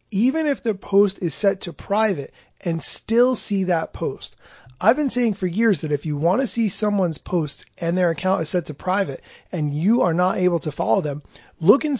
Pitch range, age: 160-215 Hz, 30-49